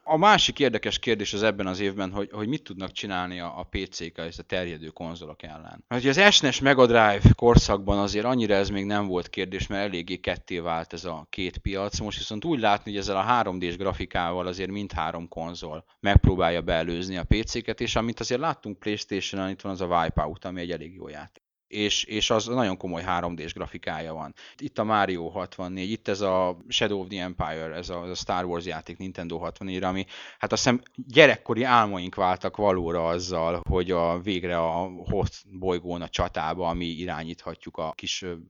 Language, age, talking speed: Hungarian, 30-49, 185 wpm